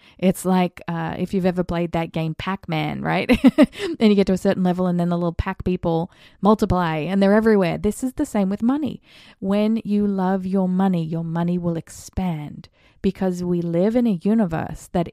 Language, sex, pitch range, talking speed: English, female, 170-205 Hz, 200 wpm